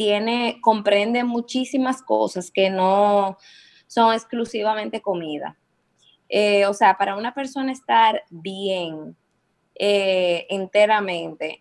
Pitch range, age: 180-220 Hz, 20-39